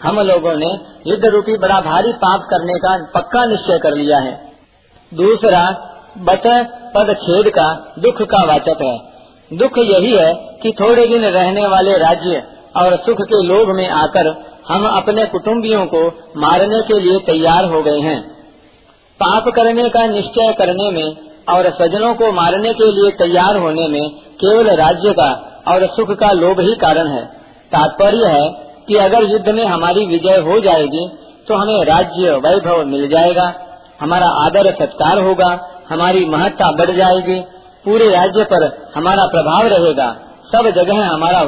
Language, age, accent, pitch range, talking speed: Hindi, 50-69, native, 170-215 Hz, 155 wpm